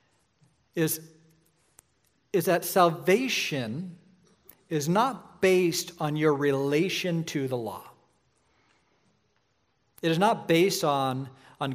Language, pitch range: English, 135-170 Hz